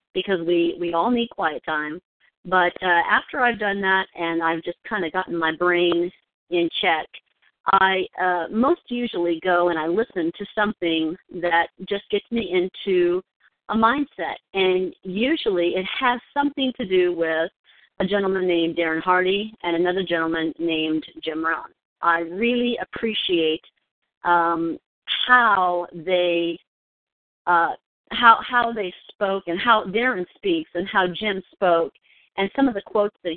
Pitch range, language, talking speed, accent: 170-210 Hz, English, 150 wpm, American